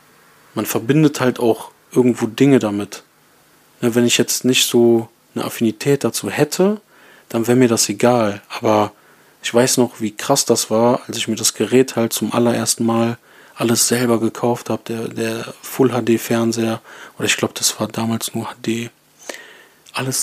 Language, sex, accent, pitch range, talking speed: German, male, German, 115-130 Hz, 160 wpm